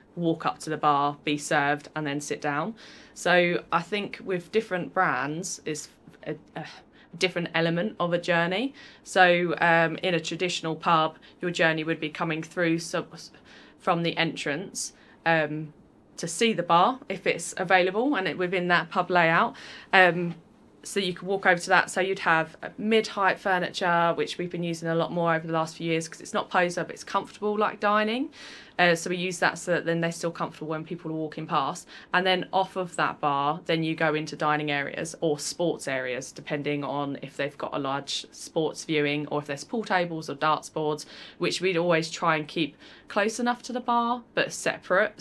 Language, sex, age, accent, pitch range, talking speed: English, female, 20-39, British, 150-180 Hz, 200 wpm